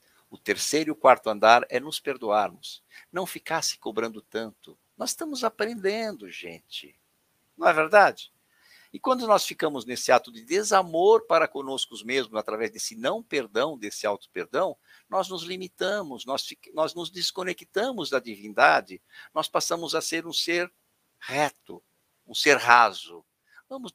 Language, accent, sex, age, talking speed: Portuguese, Brazilian, male, 60-79, 150 wpm